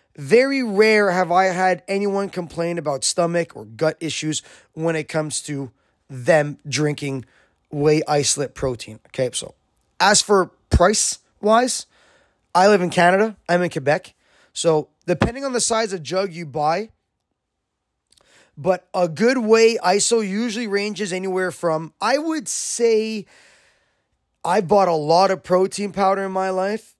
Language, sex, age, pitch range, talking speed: English, male, 20-39, 155-200 Hz, 145 wpm